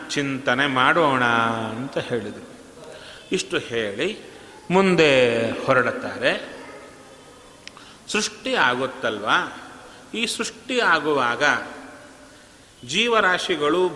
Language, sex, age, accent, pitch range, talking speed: Kannada, male, 40-59, native, 130-170 Hz, 60 wpm